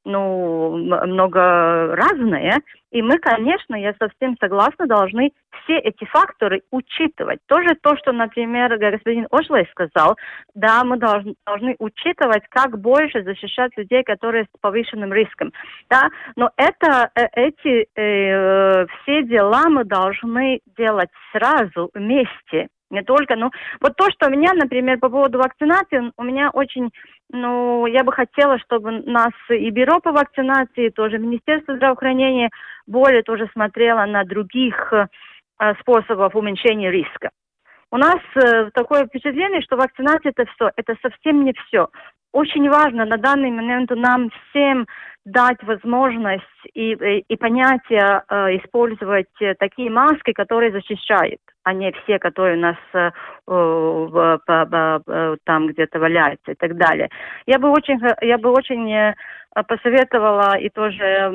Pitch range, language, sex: 205-260 Hz, Russian, female